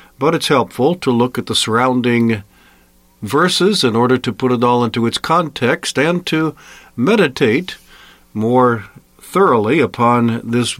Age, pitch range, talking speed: 50-69, 115-135 Hz, 140 wpm